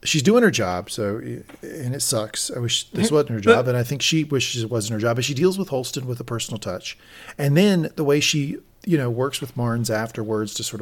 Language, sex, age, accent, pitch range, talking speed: English, male, 40-59, American, 110-145 Hz, 250 wpm